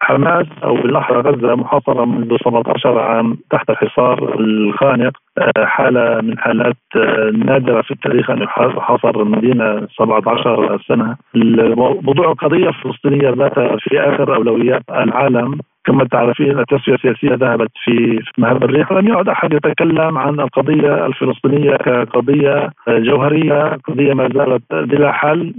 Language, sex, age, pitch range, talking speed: Arabic, male, 40-59, 120-145 Hz, 120 wpm